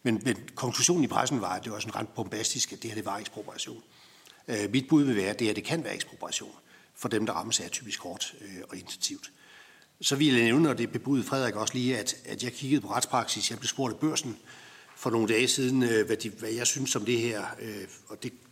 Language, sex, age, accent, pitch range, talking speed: Danish, male, 60-79, native, 110-135 Hz, 245 wpm